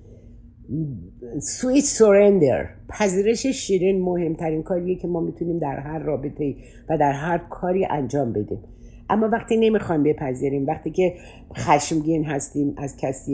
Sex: female